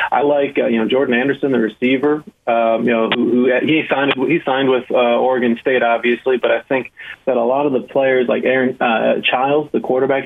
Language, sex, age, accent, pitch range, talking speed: English, male, 30-49, American, 110-130 Hz, 220 wpm